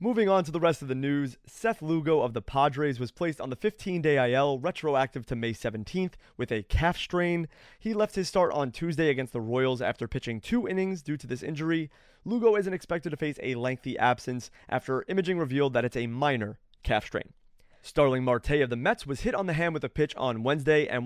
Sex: male